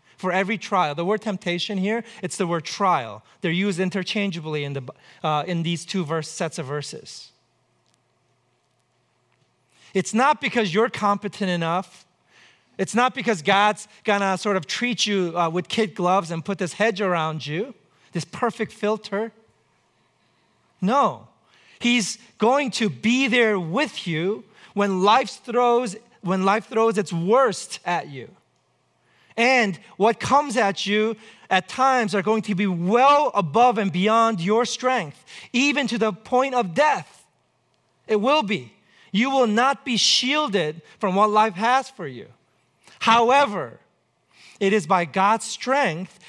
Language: English